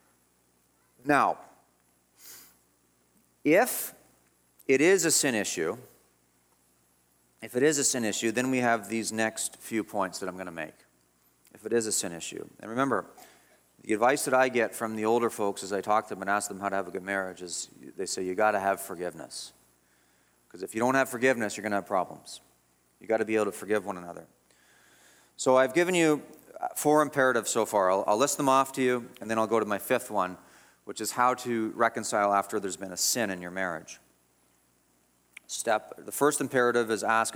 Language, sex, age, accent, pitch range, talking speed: English, male, 40-59, American, 95-130 Hz, 200 wpm